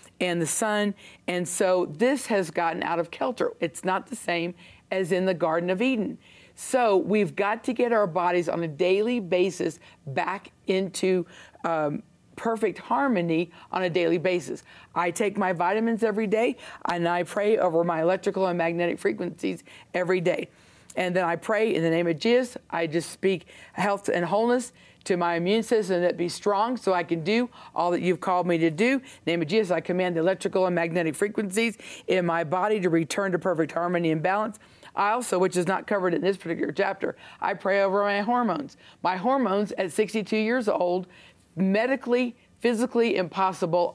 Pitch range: 175-215 Hz